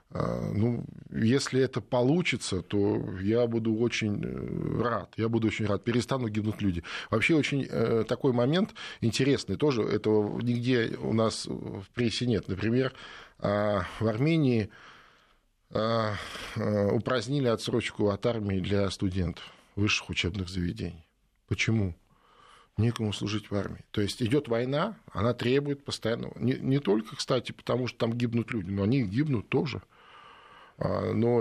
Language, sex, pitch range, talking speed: Russian, male, 105-140 Hz, 125 wpm